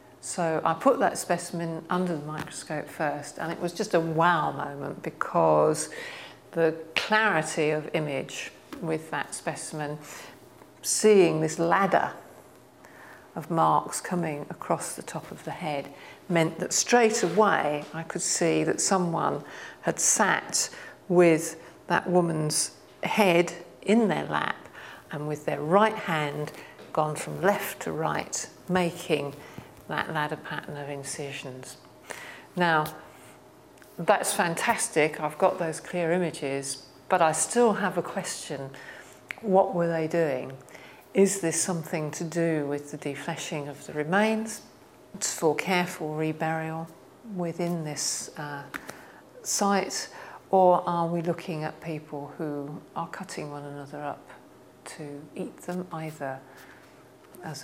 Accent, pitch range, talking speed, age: British, 150-175 Hz, 130 wpm, 50-69